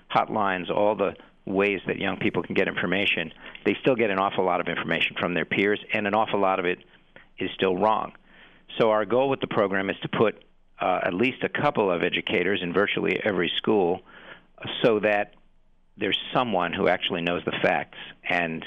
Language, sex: English, male